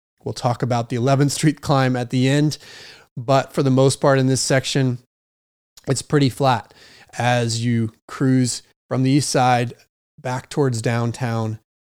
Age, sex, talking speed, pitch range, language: 30-49, male, 160 wpm, 115-135 Hz, English